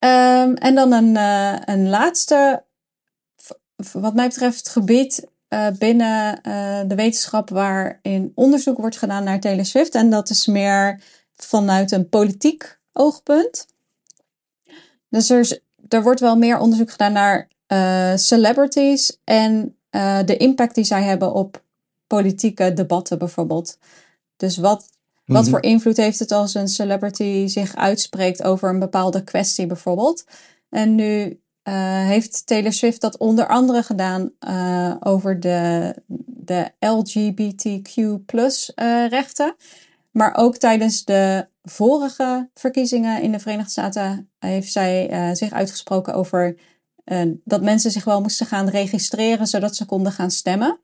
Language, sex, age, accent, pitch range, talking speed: Dutch, female, 20-39, Dutch, 195-235 Hz, 135 wpm